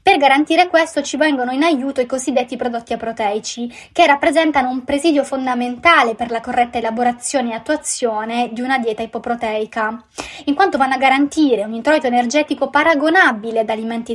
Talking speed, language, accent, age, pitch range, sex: 155 wpm, Italian, native, 20-39, 230-290 Hz, female